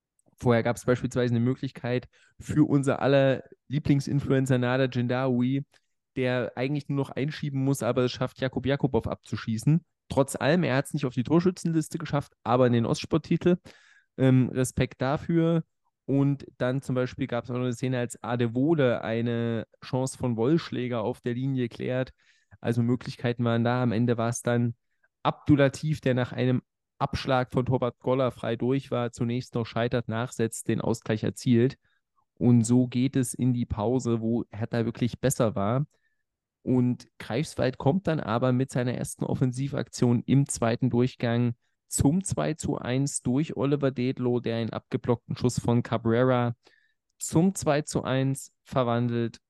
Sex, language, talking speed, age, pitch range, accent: male, German, 160 wpm, 20-39, 120-140 Hz, German